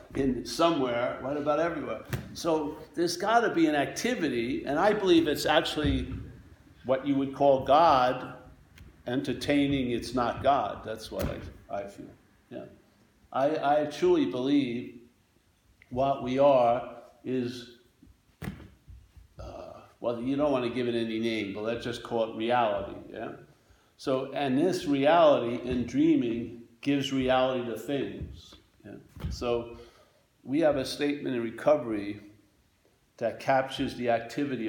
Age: 60-79